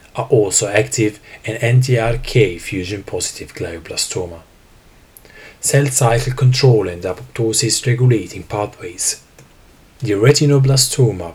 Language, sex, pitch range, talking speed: English, male, 105-125 Hz, 85 wpm